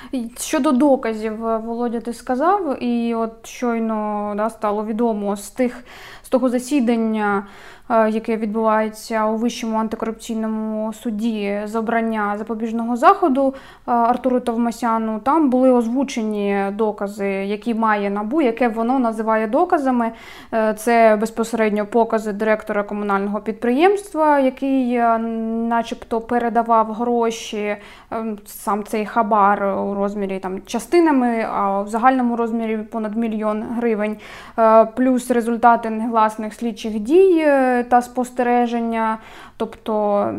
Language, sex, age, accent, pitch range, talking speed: Ukrainian, female, 20-39, native, 215-245 Hz, 105 wpm